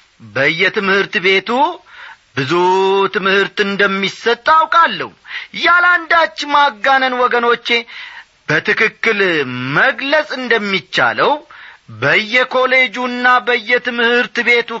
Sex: male